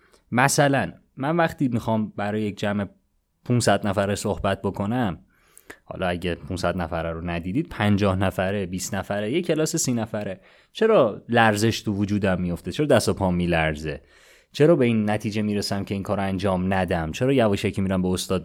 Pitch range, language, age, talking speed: 95-130 Hz, Persian, 30-49, 165 wpm